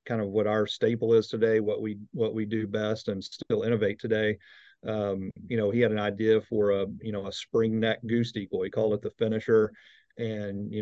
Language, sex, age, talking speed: English, male, 40-59, 215 wpm